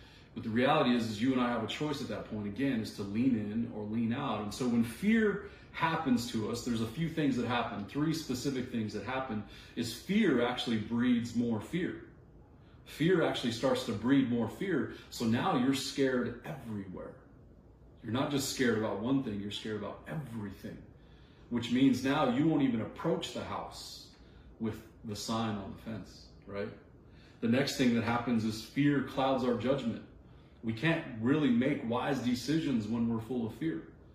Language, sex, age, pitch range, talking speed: English, male, 30-49, 110-135 Hz, 185 wpm